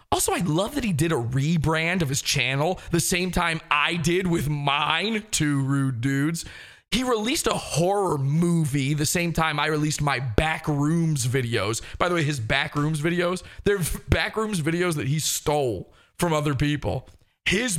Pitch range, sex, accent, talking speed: 140-195 Hz, male, American, 170 wpm